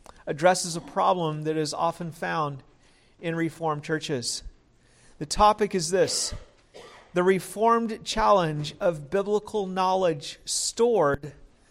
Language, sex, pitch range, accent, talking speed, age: English, male, 160-205 Hz, American, 110 wpm, 50-69